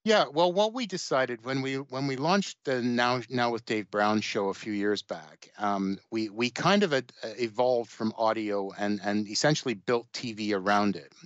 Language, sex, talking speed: English, male, 190 wpm